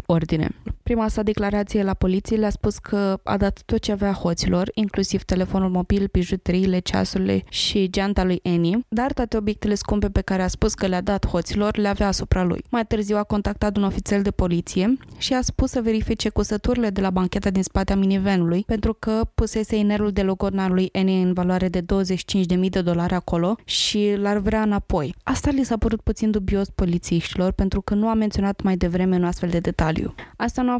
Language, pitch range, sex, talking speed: Romanian, 185-220 Hz, female, 195 wpm